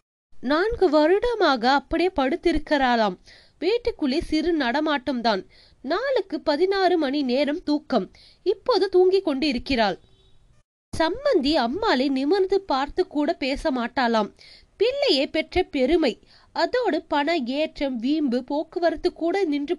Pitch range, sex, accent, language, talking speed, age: 275-360 Hz, female, native, Tamil, 60 wpm, 20-39